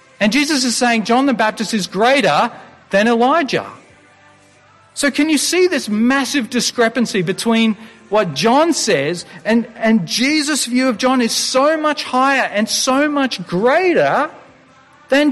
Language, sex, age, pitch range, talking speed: English, male, 40-59, 220-280 Hz, 145 wpm